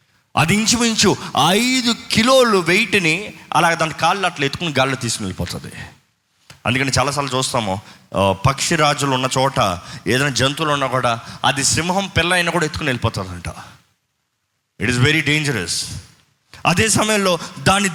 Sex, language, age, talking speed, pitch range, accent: male, Telugu, 30-49, 125 wpm, 135-200 Hz, native